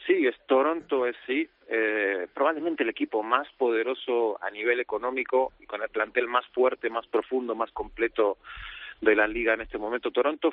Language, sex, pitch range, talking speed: Spanish, male, 115-135 Hz, 175 wpm